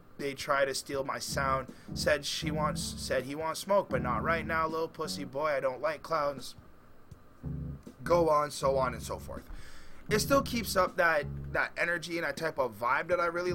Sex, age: male, 30-49